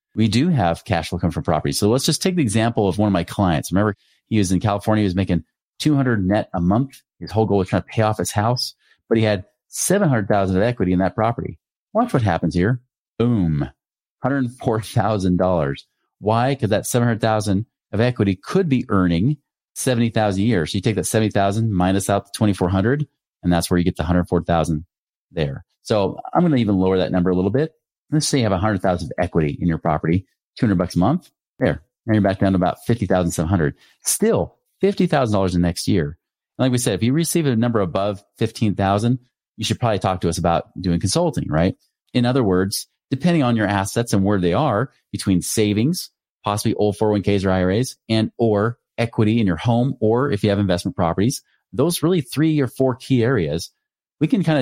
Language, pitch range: English, 95-125 Hz